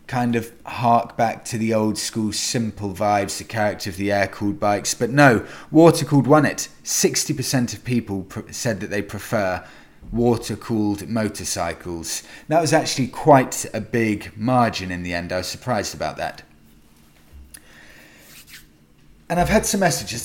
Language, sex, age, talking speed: English, male, 30-49, 150 wpm